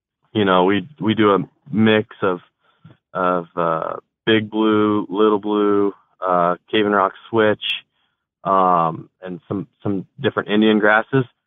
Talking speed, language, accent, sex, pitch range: 135 wpm, English, American, male, 95-110 Hz